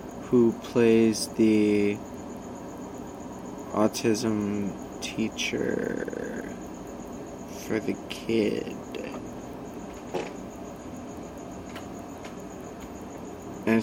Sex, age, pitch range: male, 20-39, 110-125 Hz